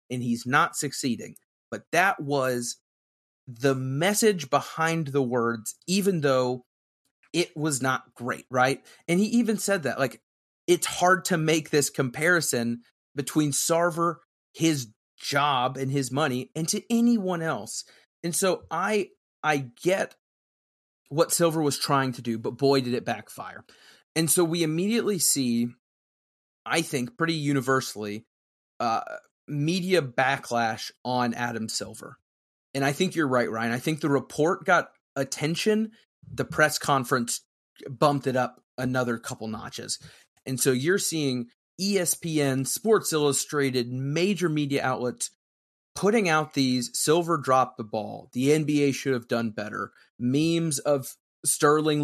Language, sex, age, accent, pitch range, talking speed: English, male, 30-49, American, 125-165 Hz, 140 wpm